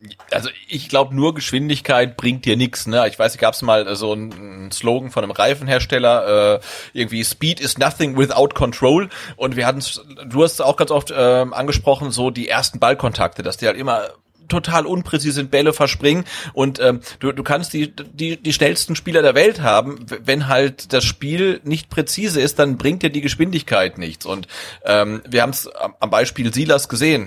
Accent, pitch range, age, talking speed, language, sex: German, 120-150 Hz, 30-49, 190 wpm, German, male